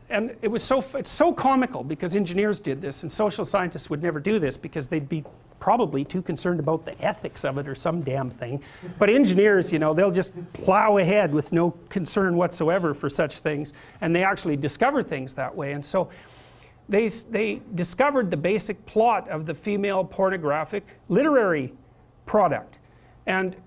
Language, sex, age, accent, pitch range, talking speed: Polish, male, 50-69, American, 160-225 Hz, 175 wpm